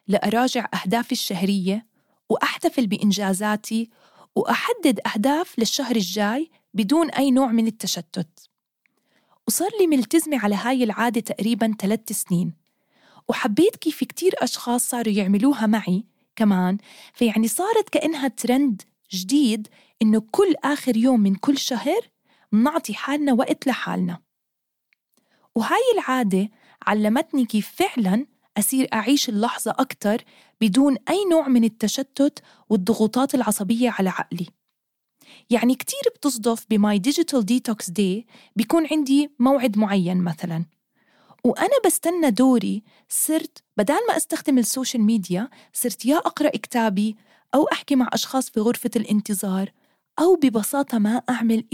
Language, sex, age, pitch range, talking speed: English, female, 20-39, 210-275 Hz, 115 wpm